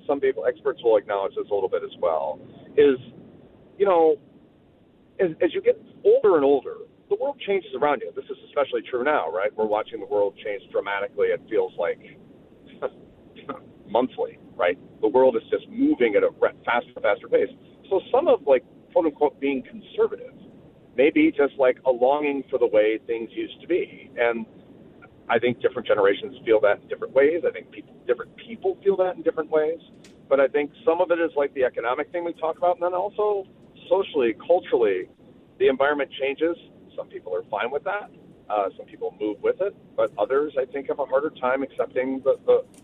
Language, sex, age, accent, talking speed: English, male, 40-59, American, 195 wpm